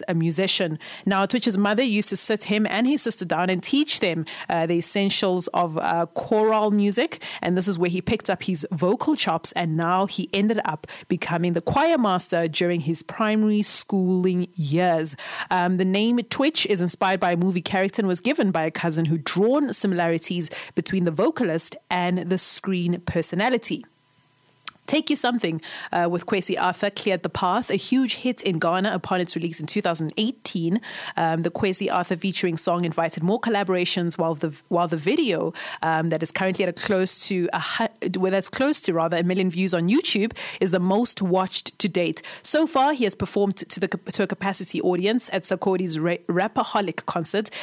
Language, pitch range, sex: English, 175-210 Hz, female